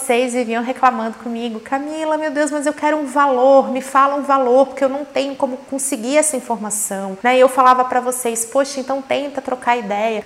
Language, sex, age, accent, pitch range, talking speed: Portuguese, female, 30-49, Brazilian, 225-285 Hz, 200 wpm